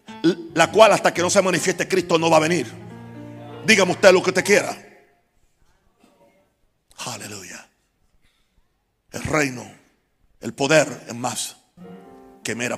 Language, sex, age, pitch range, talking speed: Spanish, male, 60-79, 150-195 Hz, 125 wpm